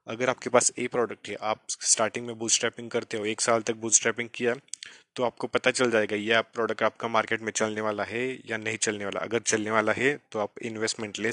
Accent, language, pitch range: Indian, English, 110-125 Hz